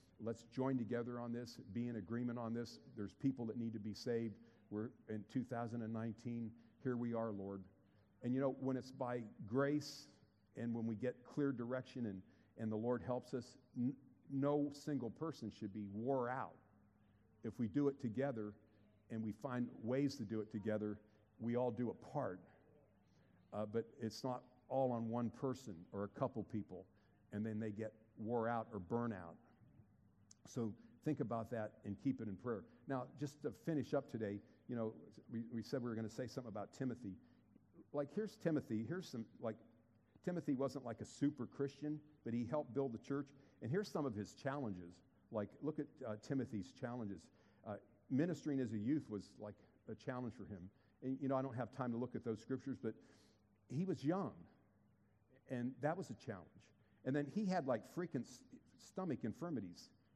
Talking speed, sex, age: 185 wpm, male, 50-69